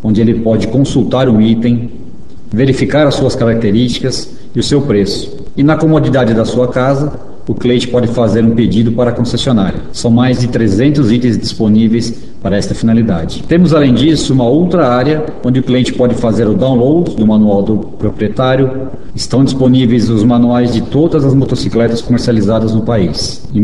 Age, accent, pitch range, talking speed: 50-69, Brazilian, 115-135 Hz, 170 wpm